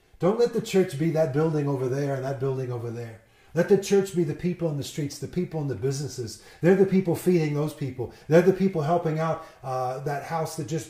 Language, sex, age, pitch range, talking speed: English, male, 30-49, 135-175 Hz, 240 wpm